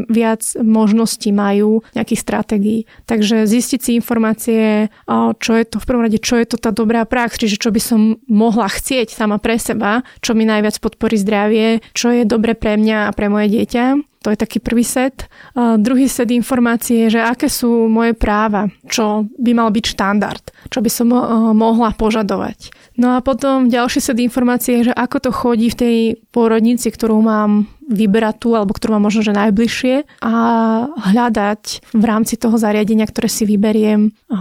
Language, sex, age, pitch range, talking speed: Slovak, female, 20-39, 215-240 Hz, 180 wpm